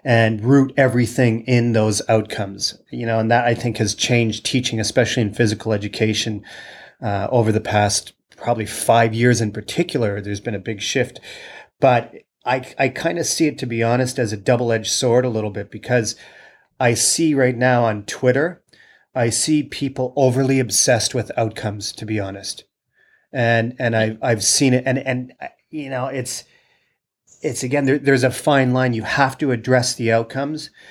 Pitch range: 110-130 Hz